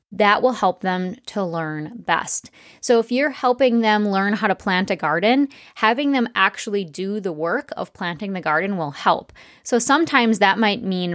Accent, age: American, 20-39